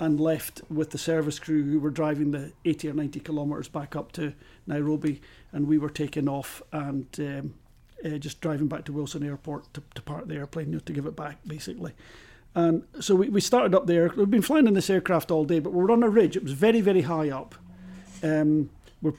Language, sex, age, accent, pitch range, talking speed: English, male, 40-59, British, 150-175 Hz, 235 wpm